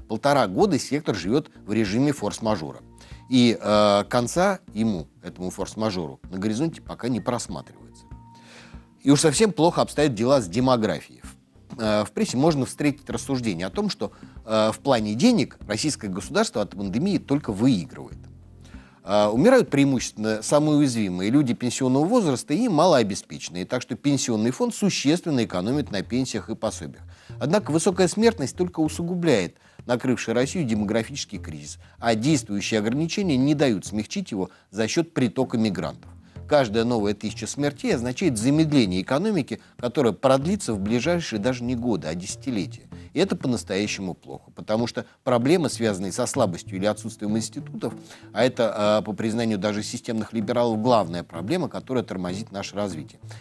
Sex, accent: male, native